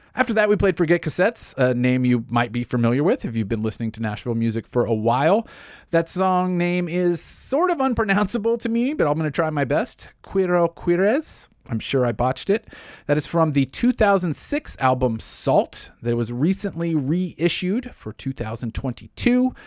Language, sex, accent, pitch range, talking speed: English, male, American, 115-155 Hz, 180 wpm